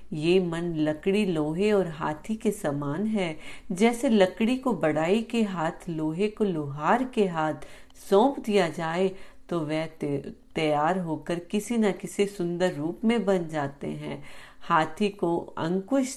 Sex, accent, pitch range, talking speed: female, native, 155-205 Hz, 150 wpm